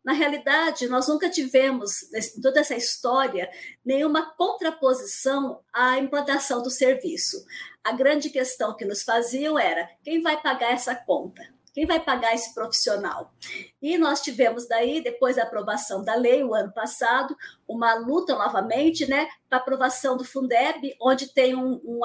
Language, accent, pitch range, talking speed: Portuguese, Brazilian, 235-295 Hz, 150 wpm